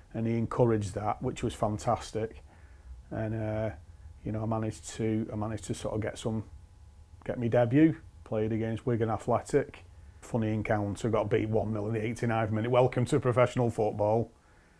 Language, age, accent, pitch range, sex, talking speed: English, 30-49, British, 105-120 Hz, male, 165 wpm